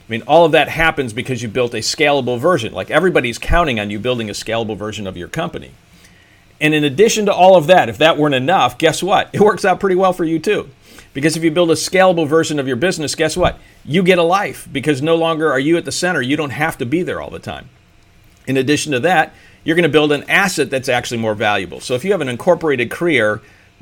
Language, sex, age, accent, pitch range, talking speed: English, male, 50-69, American, 110-155 Hz, 250 wpm